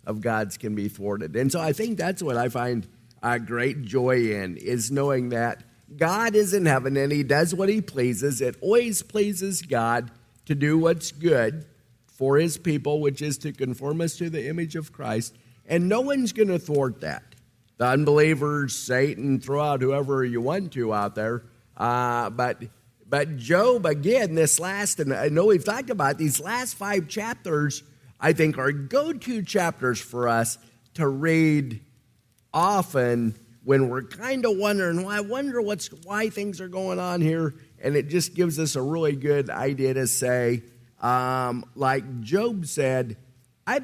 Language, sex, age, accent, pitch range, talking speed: English, male, 50-69, American, 120-165 Hz, 175 wpm